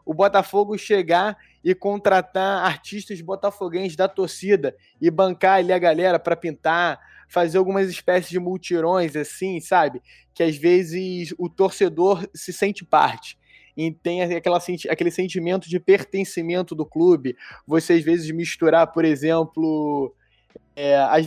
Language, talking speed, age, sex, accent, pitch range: Portuguese, 130 wpm, 20-39, male, Brazilian, 155-185 Hz